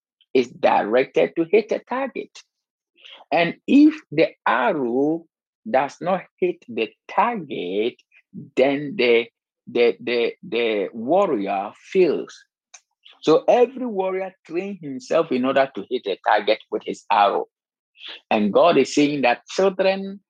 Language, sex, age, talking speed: English, male, 50-69, 125 wpm